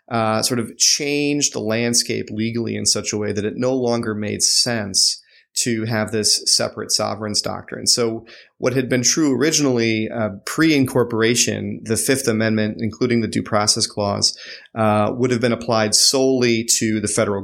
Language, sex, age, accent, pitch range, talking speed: English, male, 30-49, American, 105-120 Hz, 165 wpm